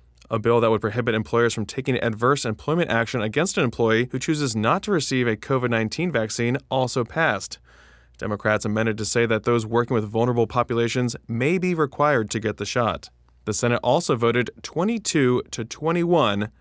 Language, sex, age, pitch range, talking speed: English, male, 20-39, 110-140 Hz, 175 wpm